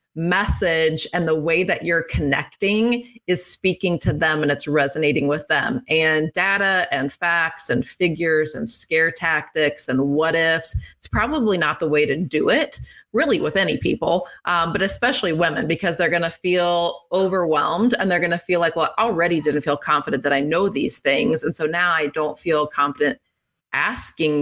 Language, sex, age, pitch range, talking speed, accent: English, female, 30-49, 150-185 Hz, 185 wpm, American